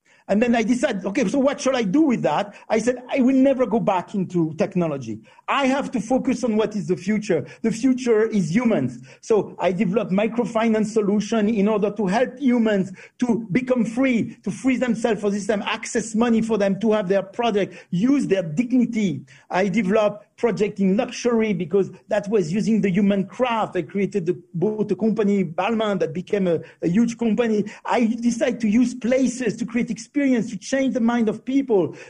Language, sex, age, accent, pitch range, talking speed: Portuguese, male, 50-69, French, 195-245 Hz, 190 wpm